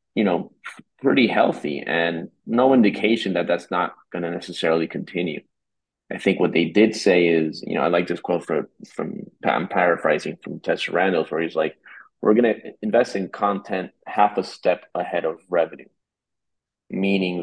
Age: 30-49